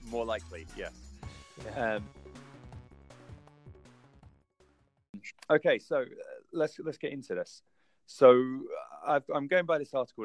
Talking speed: 115 wpm